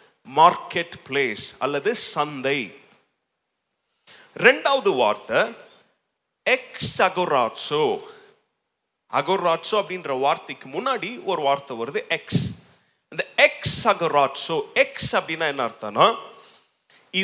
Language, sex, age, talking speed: Tamil, male, 30-49, 40 wpm